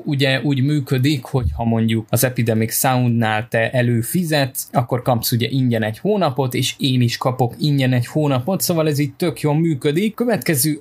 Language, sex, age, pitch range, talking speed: Hungarian, male, 20-39, 120-155 Hz, 170 wpm